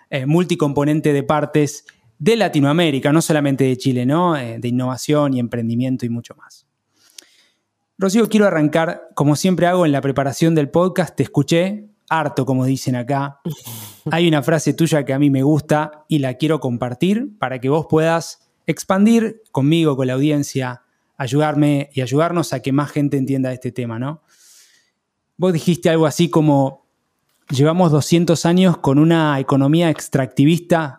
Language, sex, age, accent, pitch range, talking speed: Spanish, male, 20-39, Argentinian, 135-170 Hz, 155 wpm